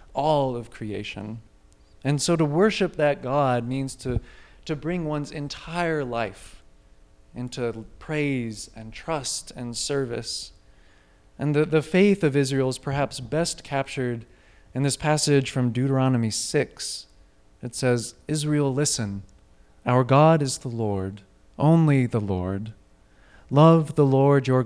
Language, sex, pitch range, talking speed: English, male, 115-150 Hz, 130 wpm